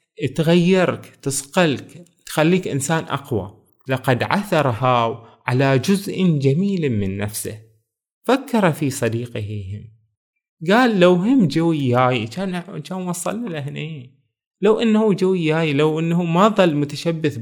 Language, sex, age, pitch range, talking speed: Arabic, male, 20-39, 125-165 Hz, 110 wpm